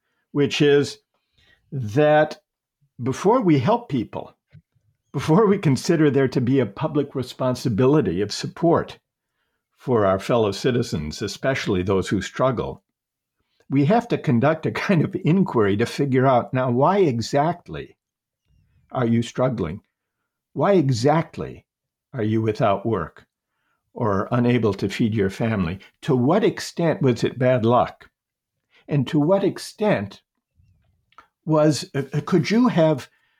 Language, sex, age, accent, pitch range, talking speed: English, male, 50-69, American, 115-150 Hz, 130 wpm